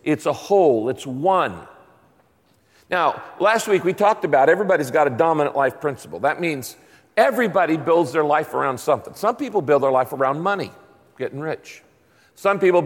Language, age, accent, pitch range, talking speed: English, 50-69, American, 140-195 Hz, 170 wpm